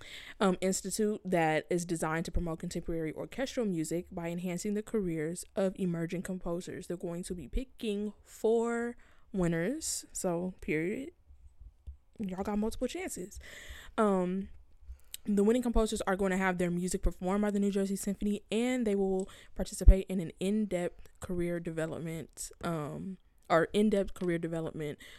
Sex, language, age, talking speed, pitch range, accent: female, English, 20-39, 145 wpm, 170-205 Hz, American